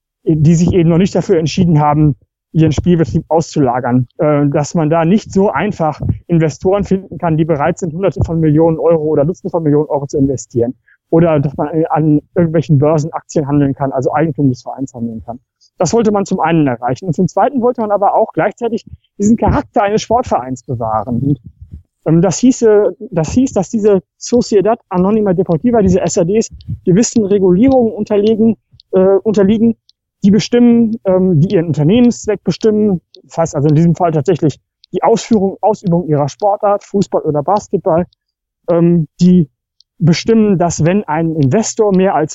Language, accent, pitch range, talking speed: German, German, 150-200 Hz, 160 wpm